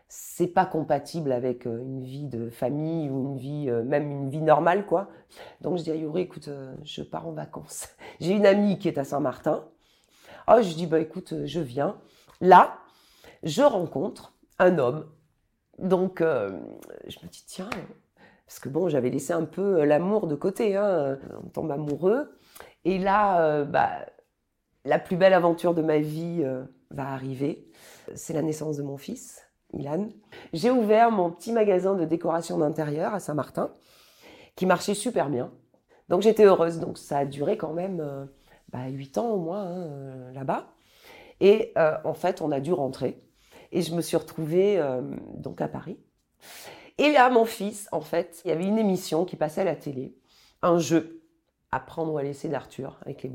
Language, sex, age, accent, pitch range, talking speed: French, female, 40-59, French, 145-190 Hz, 180 wpm